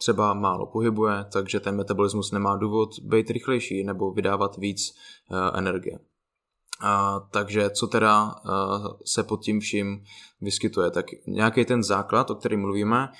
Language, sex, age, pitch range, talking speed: Slovak, male, 20-39, 95-105 Hz, 140 wpm